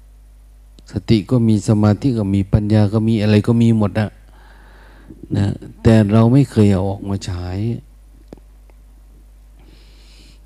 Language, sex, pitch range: Thai, male, 95-115 Hz